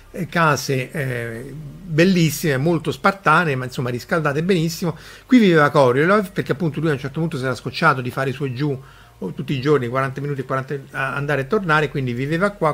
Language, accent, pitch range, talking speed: Italian, native, 125-165 Hz, 185 wpm